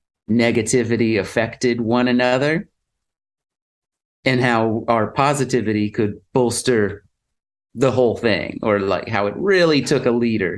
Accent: American